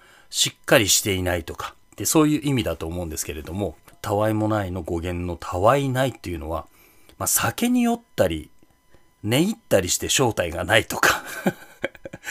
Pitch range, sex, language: 90-140 Hz, male, Japanese